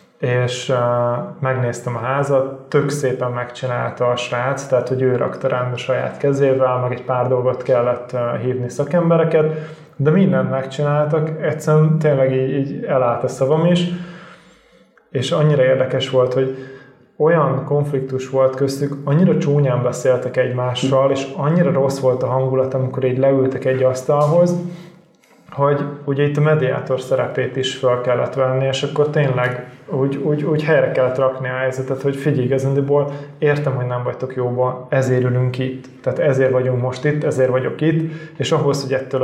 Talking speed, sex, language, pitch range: 155 wpm, male, Hungarian, 130-145 Hz